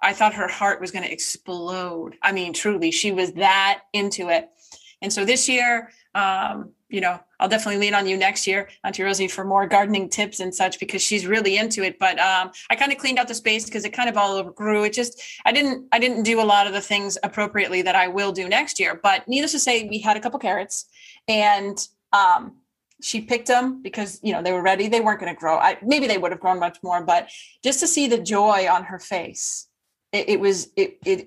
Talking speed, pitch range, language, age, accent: 235 wpm, 195-240 Hz, English, 30-49, American